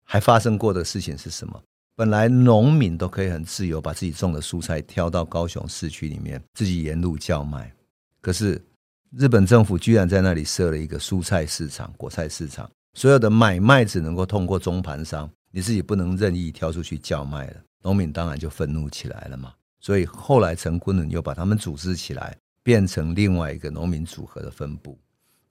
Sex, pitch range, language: male, 80-105 Hz, Chinese